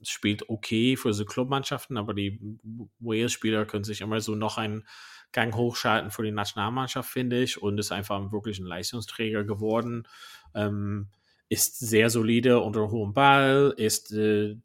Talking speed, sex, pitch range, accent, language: 150 wpm, male, 105-120 Hz, German, German